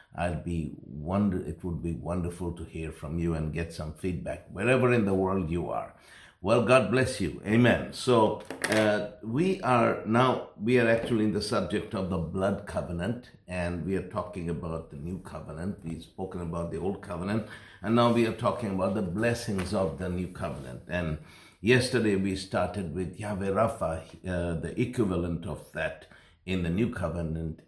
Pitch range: 85-105 Hz